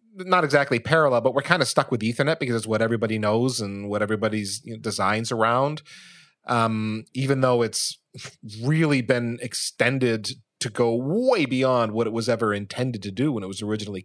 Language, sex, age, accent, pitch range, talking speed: English, male, 30-49, American, 105-130 Hz, 190 wpm